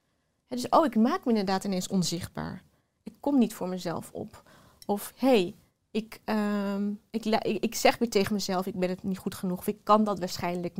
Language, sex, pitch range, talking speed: Dutch, female, 190-225 Hz, 200 wpm